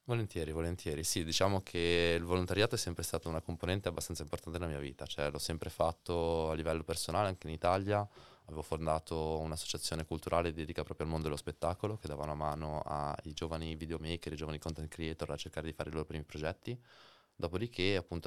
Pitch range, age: 75-85 Hz, 20-39